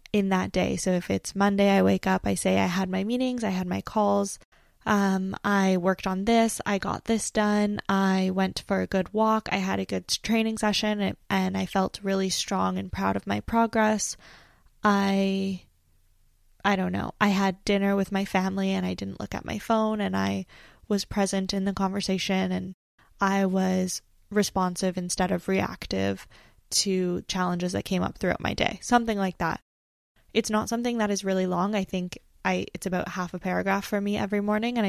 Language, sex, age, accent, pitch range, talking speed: English, female, 10-29, American, 185-210 Hz, 195 wpm